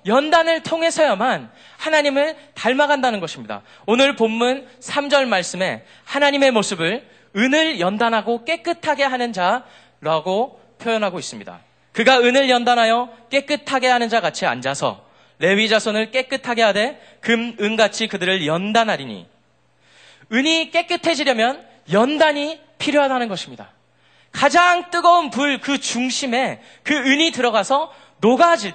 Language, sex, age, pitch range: Korean, male, 20-39, 185-270 Hz